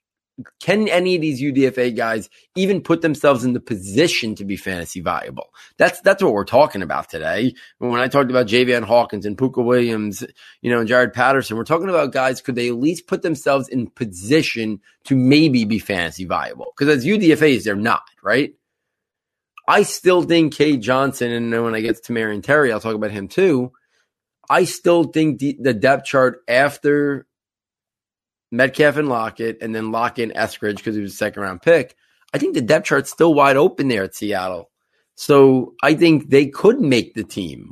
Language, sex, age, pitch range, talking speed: English, male, 30-49, 115-150 Hz, 190 wpm